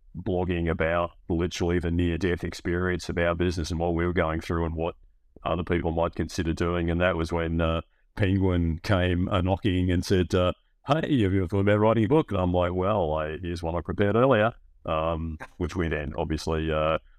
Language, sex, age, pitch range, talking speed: English, male, 40-59, 85-95 Hz, 205 wpm